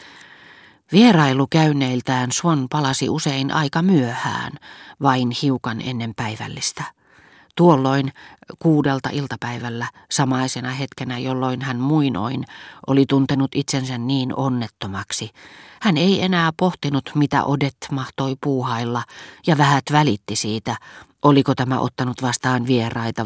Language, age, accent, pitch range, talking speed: Finnish, 40-59, native, 120-150 Hz, 105 wpm